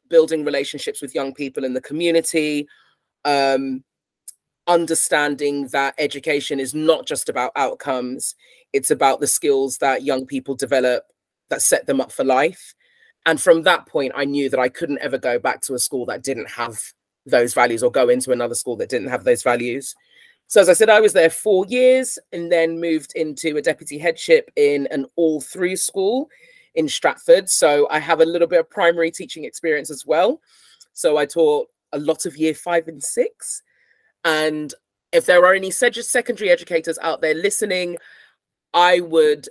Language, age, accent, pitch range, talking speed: English, 20-39, British, 135-200 Hz, 180 wpm